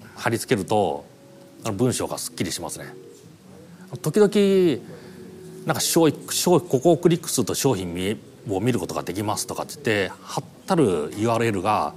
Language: Japanese